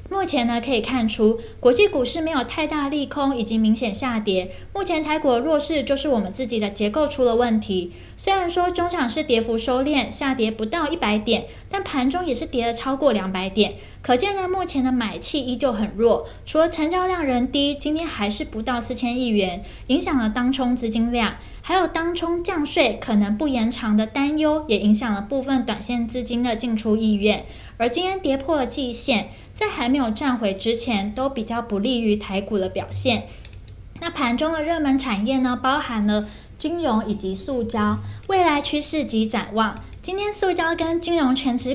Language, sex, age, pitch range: Chinese, female, 10-29, 220-300 Hz